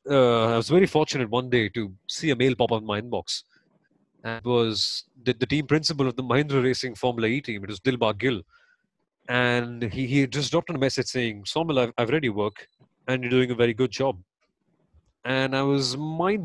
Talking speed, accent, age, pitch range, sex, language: 215 wpm, native, 30-49, 125-155 Hz, male, Hindi